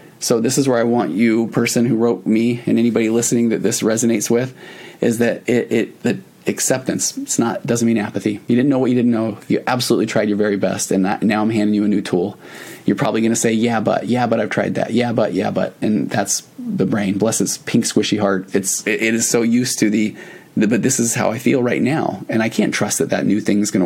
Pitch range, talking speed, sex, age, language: 110-135 Hz, 255 wpm, male, 30-49, English